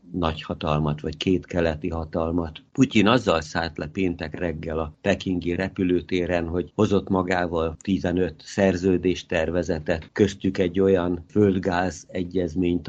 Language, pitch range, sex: Hungarian, 85-95 Hz, male